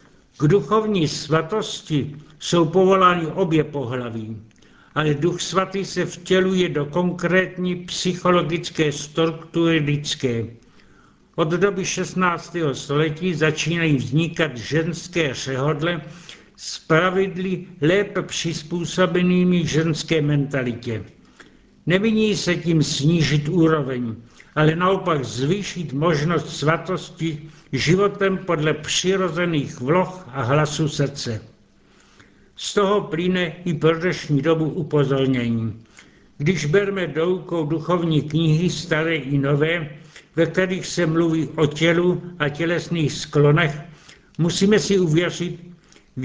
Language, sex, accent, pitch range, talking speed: Czech, male, native, 150-180 Hz, 100 wpm